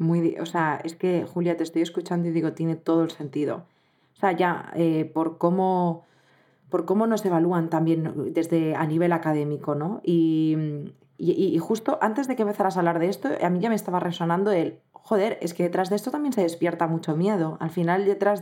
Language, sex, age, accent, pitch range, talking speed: Spanish, female, 20-39, Spanish, 165-185 Hz, 210 wpm